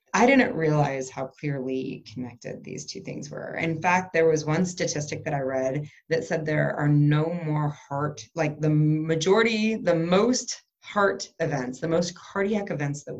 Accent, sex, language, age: American, female, English, 20-39